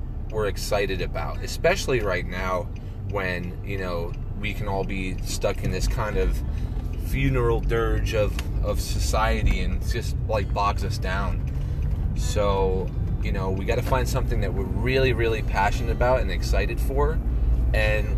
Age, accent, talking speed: 30-49, American, 155 wpm